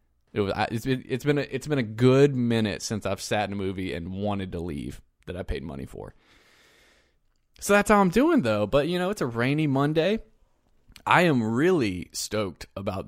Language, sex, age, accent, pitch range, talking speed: English, male, 20-39, American, 100-120 Hz, 200 wpm